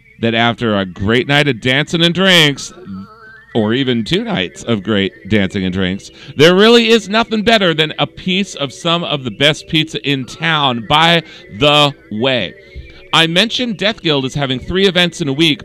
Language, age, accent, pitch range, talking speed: English, 40-59, American, 125-175 Hz, 185 wpm